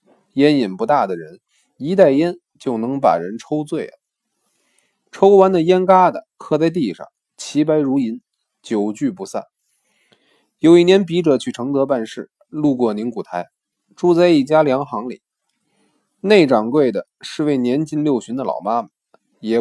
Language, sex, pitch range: Chinese, male, 140-200 Hz